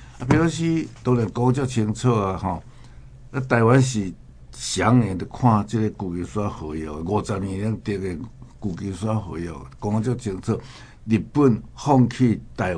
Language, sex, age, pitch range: Chinese, male, 60-79, 95-125 Hz